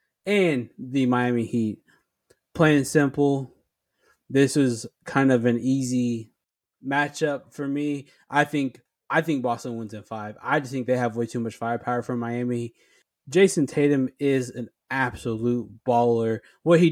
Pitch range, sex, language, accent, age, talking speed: 120-145 Hz, male, English, American, 20-39, 155 wpm